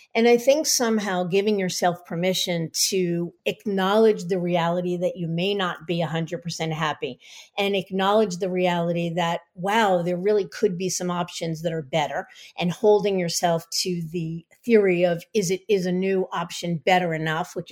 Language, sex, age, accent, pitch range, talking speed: English, female, 50-69, American, 175-215 Hz, 165 wpm